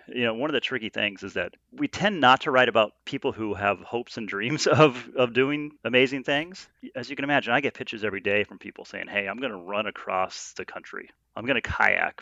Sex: male